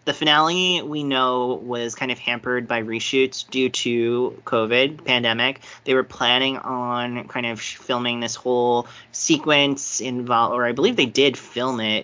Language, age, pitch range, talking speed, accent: English, 30-49, 110-130 Hz, 165 wpm, American